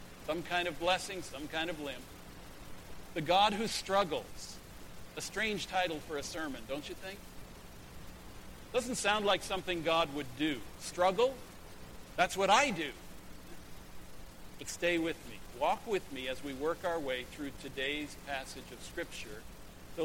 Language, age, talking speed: English, 50-69, 155 wpm